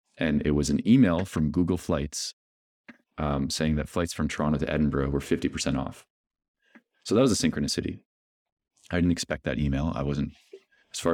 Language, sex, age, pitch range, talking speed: English, male, 30-49, 75-85 Hz, 180 wpm